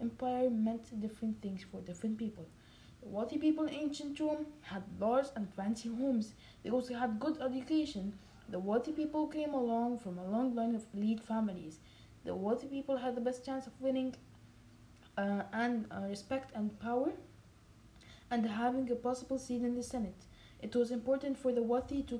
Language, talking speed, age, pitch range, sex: English, 175 wpm, 20-39, 215-260 Hz, female